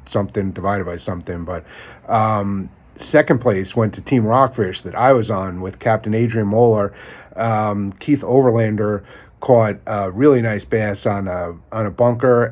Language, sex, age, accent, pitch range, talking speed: English, male, 40-59, American, 100-120 Hz, 165 wpm